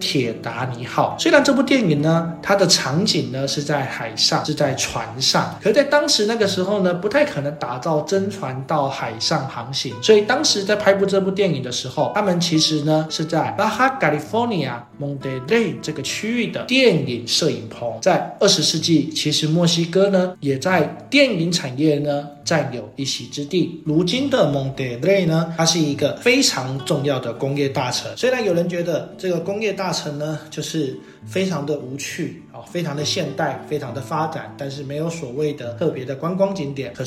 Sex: male